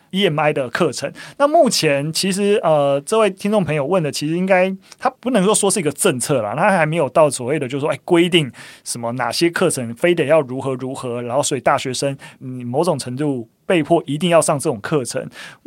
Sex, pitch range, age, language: male, 140-195 Hz, 30-49, Chinese